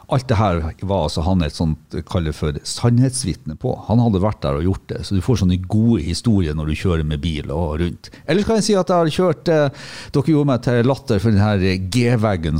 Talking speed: 225 wpm